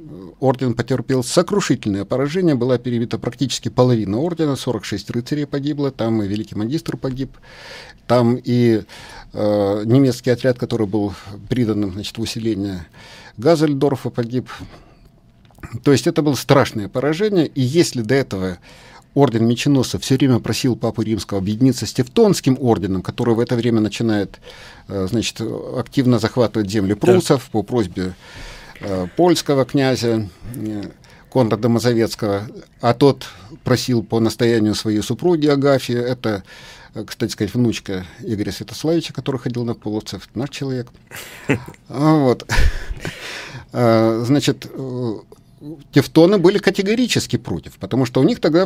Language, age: Russian, 50-69